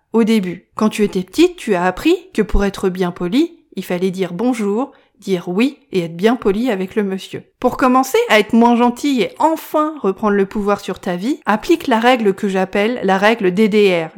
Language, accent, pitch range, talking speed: French, French, 200-255 Hz, 205 wpm